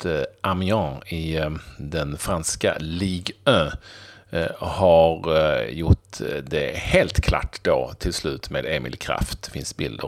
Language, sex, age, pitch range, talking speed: Swedish, male, 40-59, 85-105 Hz, 120 wpm